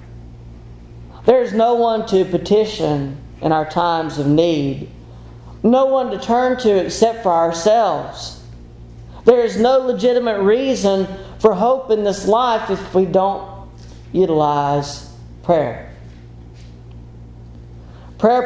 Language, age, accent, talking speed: English, 40-59, American, 115 wpm